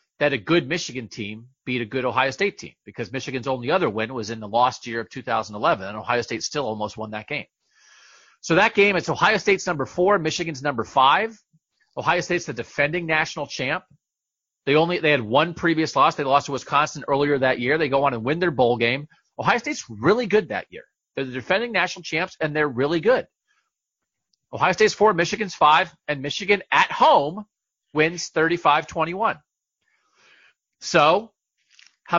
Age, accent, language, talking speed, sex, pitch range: 40-59, American, English, 185 wpm, male, 130-175 Hz